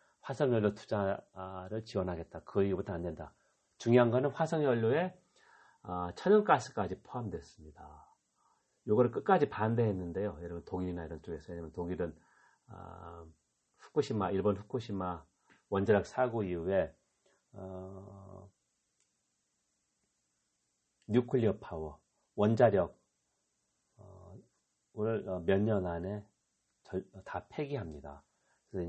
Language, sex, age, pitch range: Korean, male, 40-59, 90-115 Hz